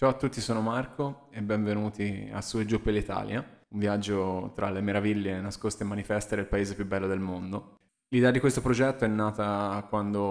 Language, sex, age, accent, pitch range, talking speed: Italian, male, 20-39, native, 100-115 Hz, 200 wpm